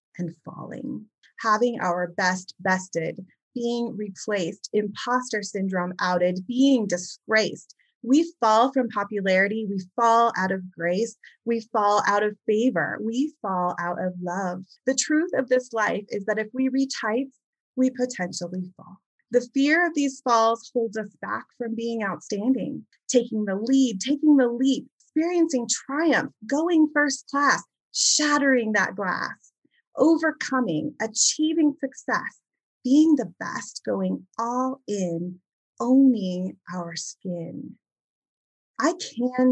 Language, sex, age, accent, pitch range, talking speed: English, female, 30-49, American, 185-265 Hz, 130 wpm